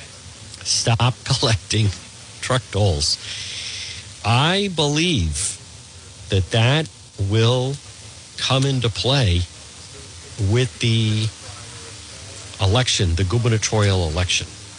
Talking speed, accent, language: 75 wpm, American, English